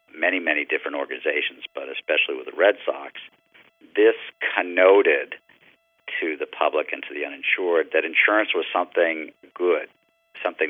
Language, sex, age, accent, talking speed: English, male, 50-69, American, 140 wpm